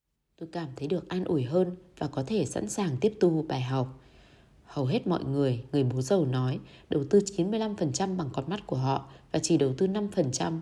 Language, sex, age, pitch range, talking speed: Vietnamese, female, 20-39, 130-180 Hz, 210 wpm